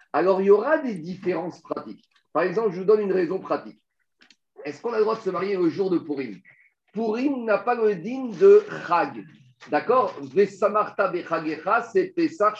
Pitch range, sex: 170-230 Hz, male